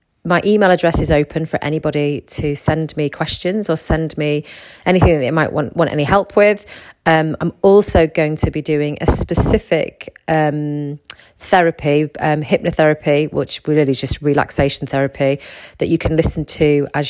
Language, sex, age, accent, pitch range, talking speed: English, female, 30-49, British, 145-165 Hz, 170 wpm